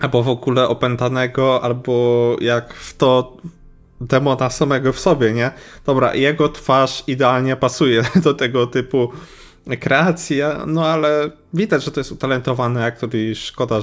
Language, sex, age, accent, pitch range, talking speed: Polish, male, 20-39, native, 110-130 Hz, 140 wpm